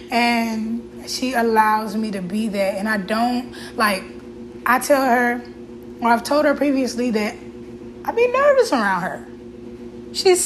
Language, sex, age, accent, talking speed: English, female, 10-29, American, 150 wpm